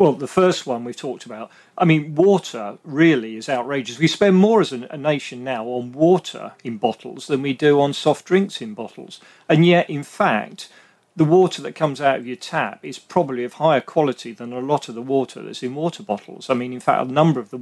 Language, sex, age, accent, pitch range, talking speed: English, male, 40-59, British, 125-160 Hz, 230 wpm